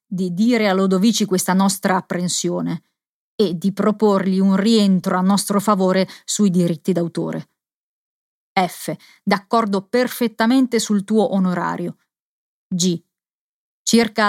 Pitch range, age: 185-220 Hz, 30-49